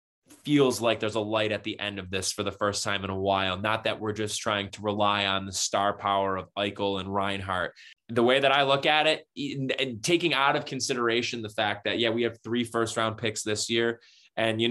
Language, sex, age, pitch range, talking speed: English, male, 20-39, 105-130 Hz, 235 wpm